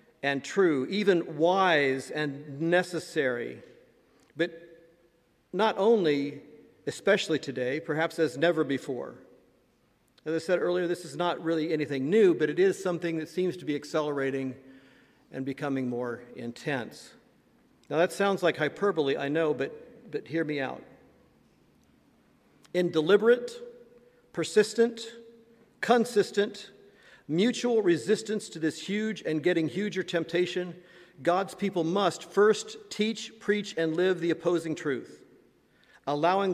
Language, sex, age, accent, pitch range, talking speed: English, male, 50-69, American, 150-205 Hz, 125 wpm